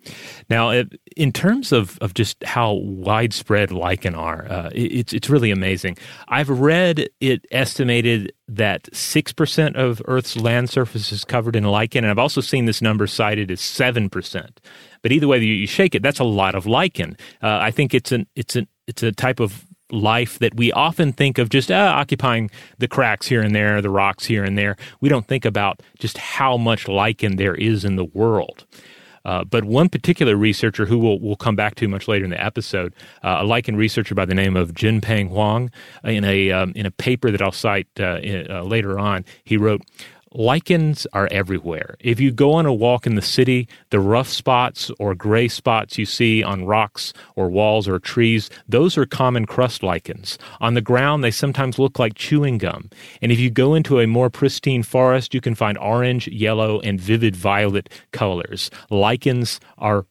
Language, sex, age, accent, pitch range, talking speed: English, male, 30-49, American, 105-125 Hz, 190 wpm